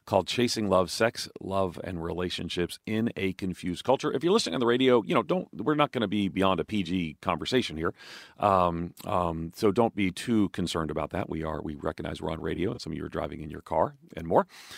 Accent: American